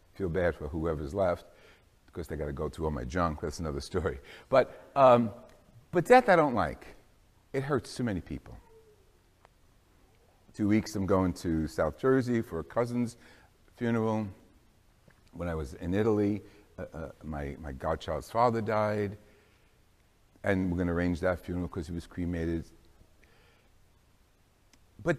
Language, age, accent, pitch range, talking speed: English, 60-79, American, 90-140 Hz, 150 wpm